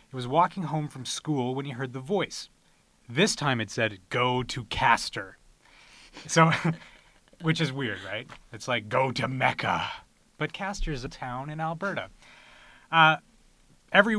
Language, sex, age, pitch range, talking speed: English, male, 30-49, 120-155 Hz, 155 wpm